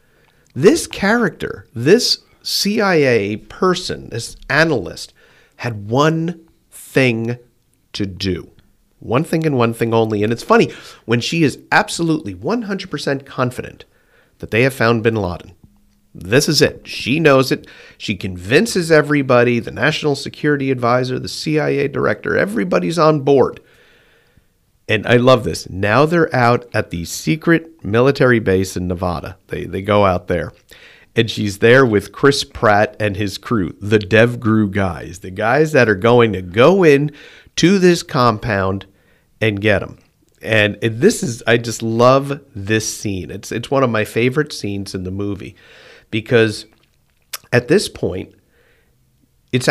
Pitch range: 105-140 Hz